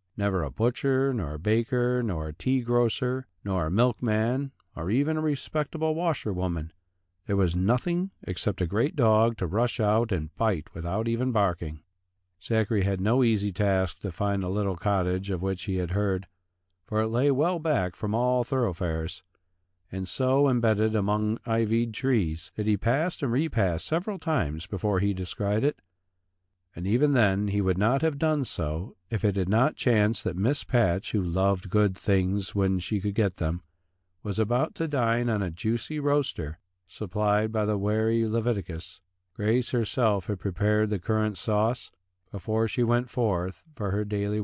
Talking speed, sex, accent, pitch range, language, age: 170 wpm, male, American, 95-120 Hz, English, 50-69